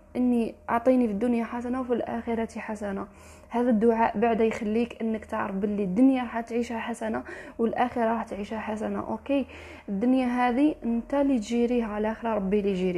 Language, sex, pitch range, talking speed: Arabic, female, 215-250 Hz, 145 wpm